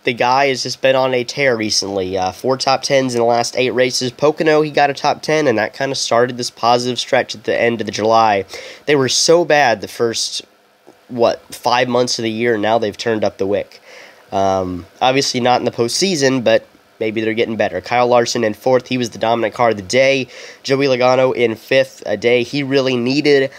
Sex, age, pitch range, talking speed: male, 10-29, 115-140 Hz, 225 wpm